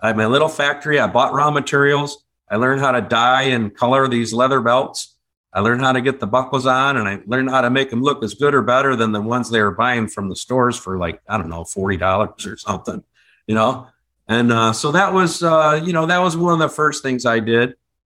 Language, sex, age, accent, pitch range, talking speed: English, male, 50-69, American, 110-140 Hz, 250 wpm